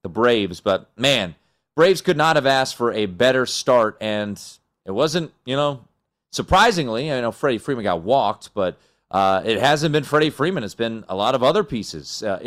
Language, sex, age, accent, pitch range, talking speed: English, male, 30-49, American, 105-135 Hz, 190 wpm